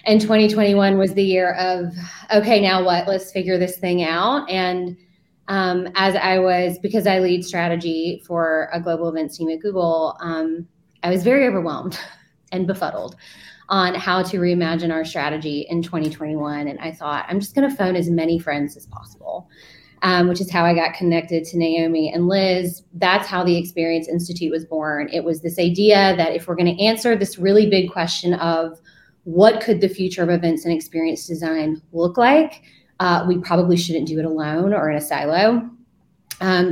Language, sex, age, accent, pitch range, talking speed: English, female, 20-39, American, 165-185 Hz, 185 wpm